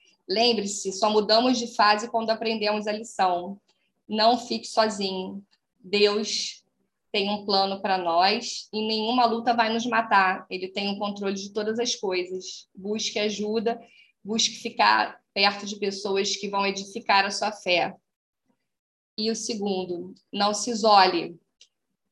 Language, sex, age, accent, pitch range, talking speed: Portuguese, female, 10-29, Brazilian, 200-225 Hz, 140 wpm